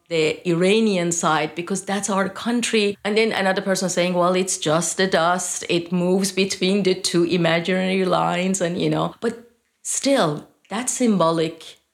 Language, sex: English, female